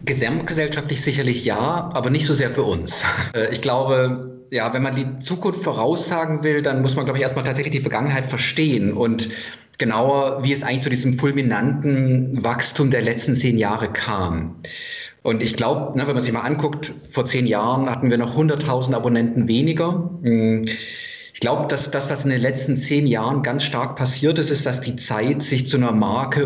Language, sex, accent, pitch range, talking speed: German, male, German, 115-140 Hz, 185 wpm